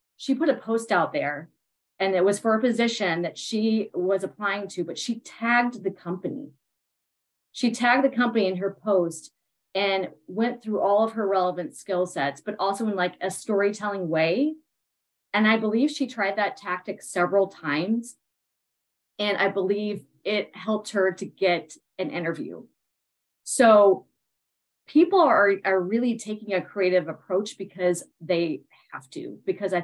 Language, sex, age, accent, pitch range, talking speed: English, female, 30-49, American, 180-220 Hz, 160 wpm